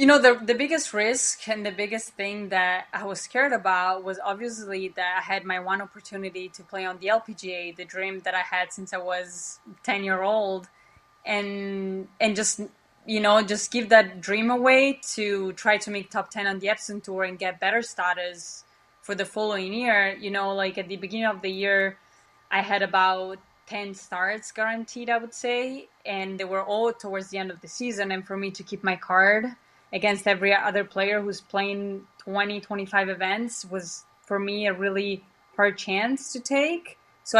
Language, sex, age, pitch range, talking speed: English, female, 20-39, 190-220 Hz, 195 wpm